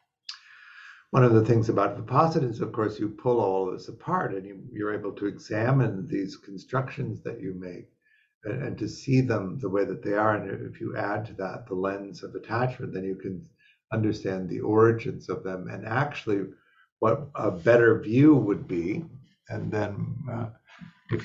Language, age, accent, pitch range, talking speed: English, 50-69, American, 100-135 Hz, 185 wpm